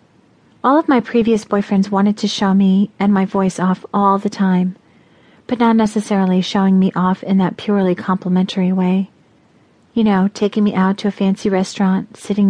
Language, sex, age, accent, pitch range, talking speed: English, female, 40-59, American, 195-220 Hz, 180 wpm